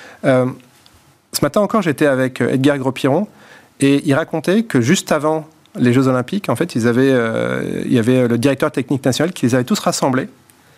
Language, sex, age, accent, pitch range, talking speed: French, male, 30-49, French, 115-135 Hz, 190 wpm